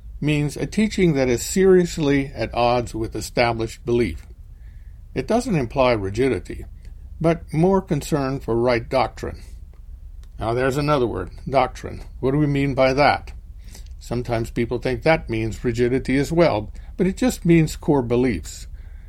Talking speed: 145 wpm